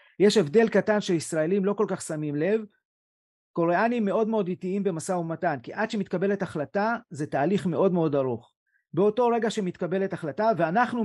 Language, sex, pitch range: Hebrew, male, 165-205 Hz